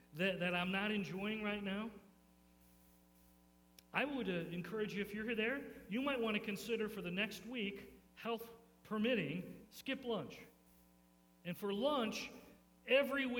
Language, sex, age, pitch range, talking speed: English, male, 40-59, 150-235 Hz, 150 wpm